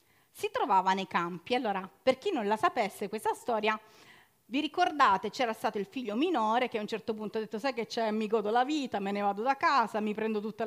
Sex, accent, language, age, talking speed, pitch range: female, native, Italian, 40-59, 230 wpm, 200-255 Hz